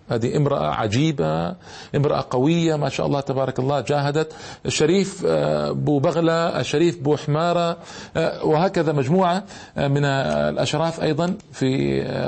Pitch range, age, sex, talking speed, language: 125-155 Hz, 40-59, male, 110 wpm, Arabic